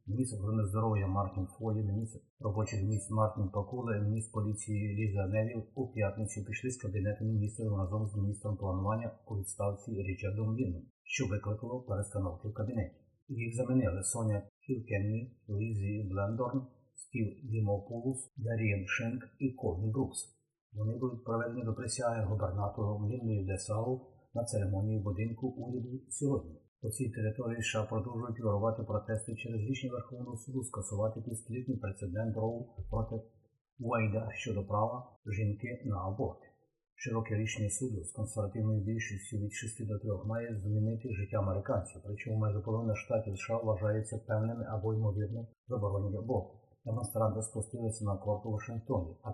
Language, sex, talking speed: Ukrainian, male, 135 wpm